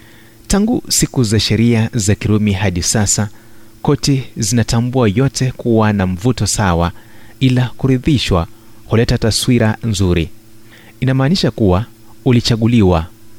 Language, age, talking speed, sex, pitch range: Swahili, 30-49, 105 wpm, male, 100-115 Hz